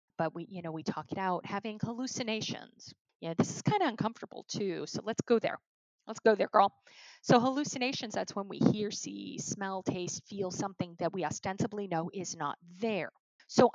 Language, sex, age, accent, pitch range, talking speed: English, female, 40-59, American, 175-225 Hz, 190 wpm